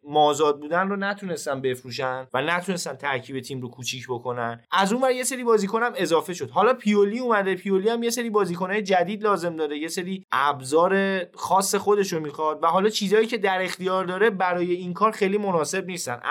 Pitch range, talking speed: 155-200 Hz, 190 wpm